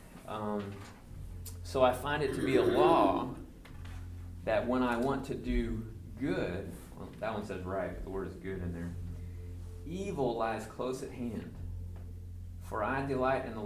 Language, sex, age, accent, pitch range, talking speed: English, male, 30-49, American, 90-115 Hz, 160 wpm